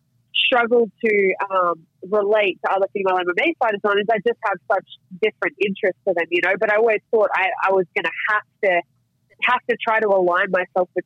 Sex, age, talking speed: female, 20-39, 205 wpm